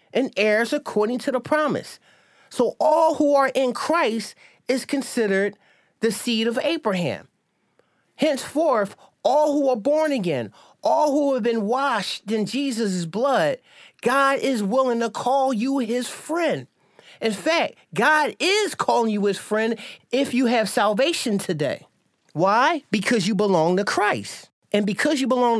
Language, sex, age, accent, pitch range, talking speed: English, male, 30-49, American, 215-270 Hz, 150 wpm